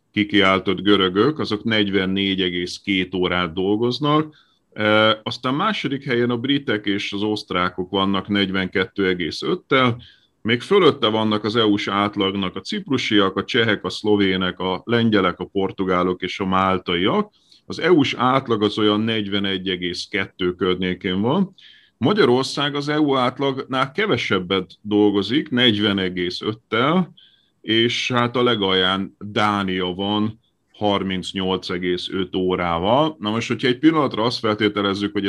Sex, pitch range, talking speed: male, 95-115 Hz, 115 wpm